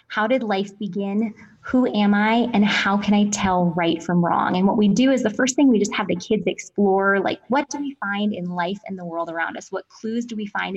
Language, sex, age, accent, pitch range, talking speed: English, female, 20-39, American, 180-230 Hz, 255 wpm